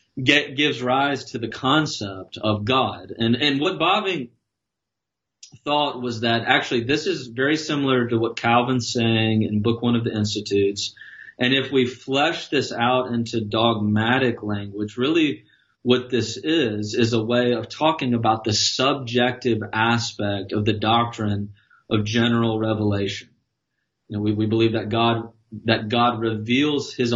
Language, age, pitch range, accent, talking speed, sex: English, 30-49, 110-125 Hz, American, 150 wpm, male